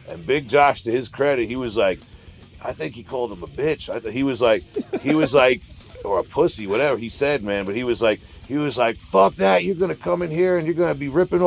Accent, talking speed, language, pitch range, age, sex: American, 260 wpm, English, 115-165 Hz, 40-59, male